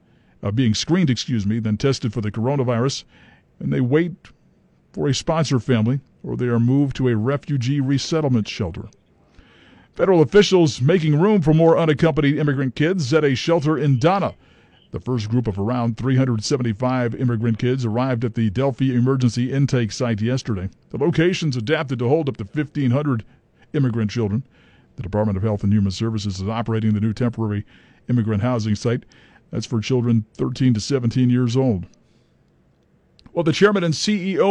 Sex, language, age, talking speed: male, English, 50-69, 165 wpm